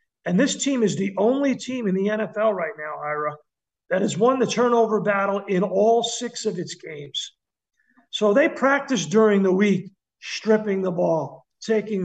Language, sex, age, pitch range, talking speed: English, male, 50-69, 195-245 Hz, 175 wpm